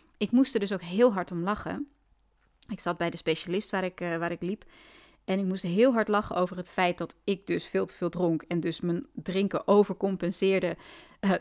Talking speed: 220 wpm